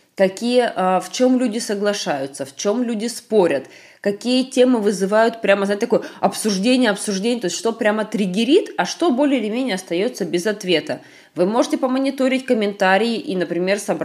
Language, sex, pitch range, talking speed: Russian, female, 185-255 Hz, 150 wpm